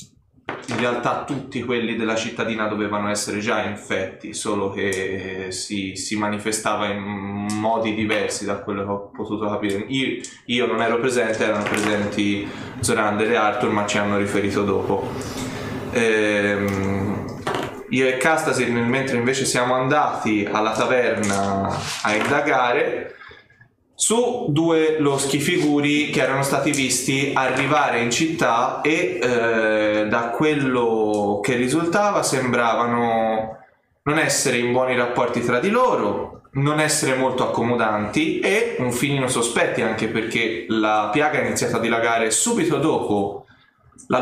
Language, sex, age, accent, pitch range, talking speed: Italian, male, 20-39, native, 105-135 Hz, 130 wpm